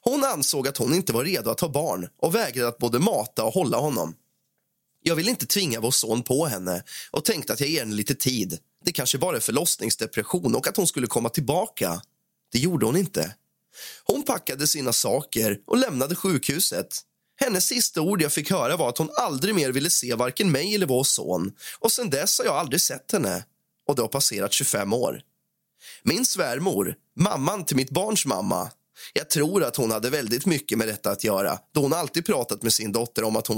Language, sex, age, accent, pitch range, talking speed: Swedish, male, 20-39, native, 115-175 Hz, 205 wpm